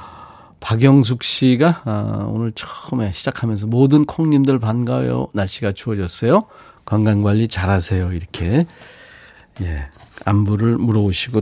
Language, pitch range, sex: Korean, 100-135 Hz, male